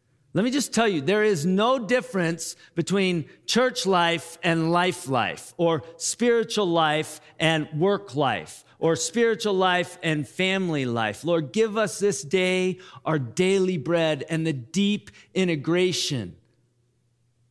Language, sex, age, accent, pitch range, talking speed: English, male, 40-59, American, 120-170 Hz, 135 wpm